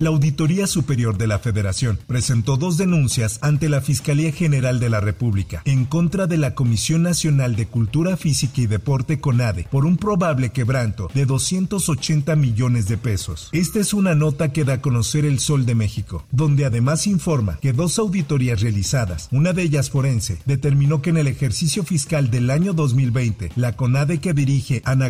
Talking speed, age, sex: 175 wpm, 50-69, male